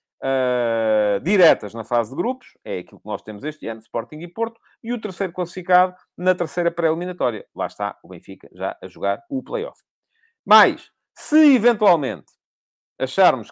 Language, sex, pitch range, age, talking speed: English, male, 125-175 Hz, 40-59, 160 wpm